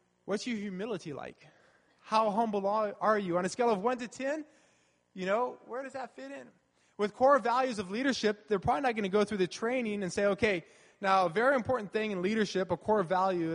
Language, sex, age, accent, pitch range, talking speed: English, male, 20-39, American, 160-210 Hz, 215 wpm